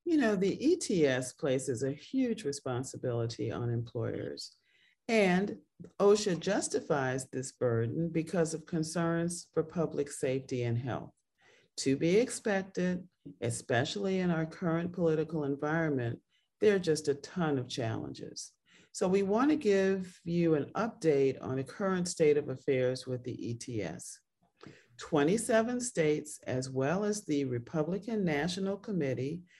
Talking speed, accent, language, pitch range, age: 130 wpm, American, English, 135-185 Hz, 40-59